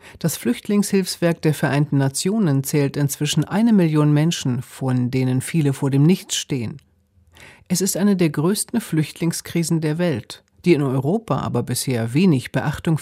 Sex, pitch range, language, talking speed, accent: female, 135-180 Hz, German, 150 wpm, German